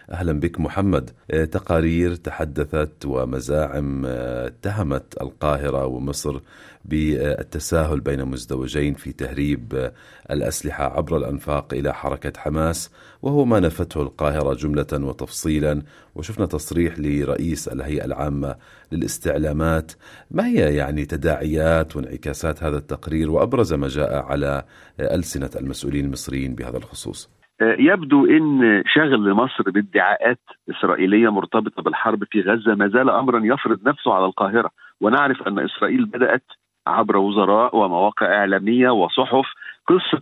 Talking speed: 110 wpm